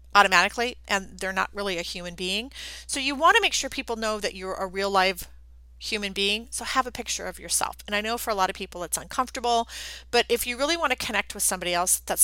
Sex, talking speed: female, 245 wpm